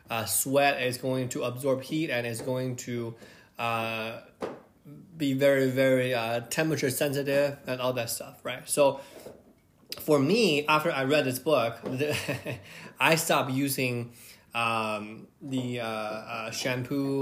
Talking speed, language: 135 wpm, English